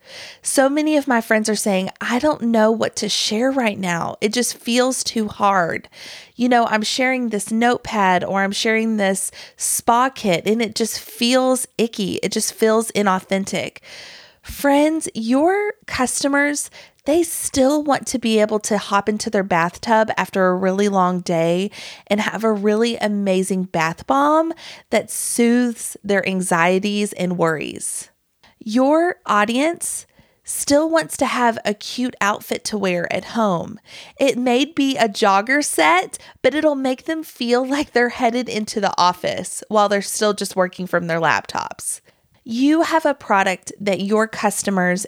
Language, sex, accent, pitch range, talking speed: English, female, American, 195-255 Hz, 155 wpm